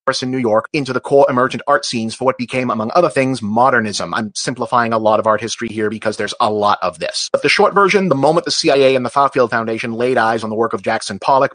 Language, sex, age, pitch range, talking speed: English, male, 30-49, 115-135 Hz, 260 wpm